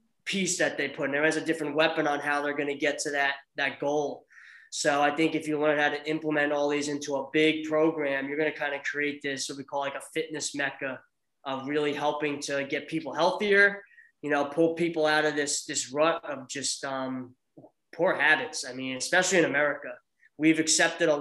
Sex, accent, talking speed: male, American, 220 wpm